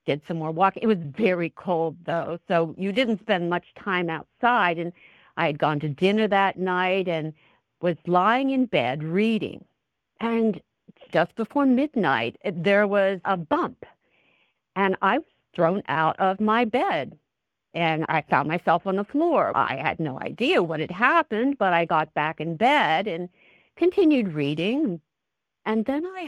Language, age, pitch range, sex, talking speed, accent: English, 50-69, 165-220 Hz, female, 165 wpm, American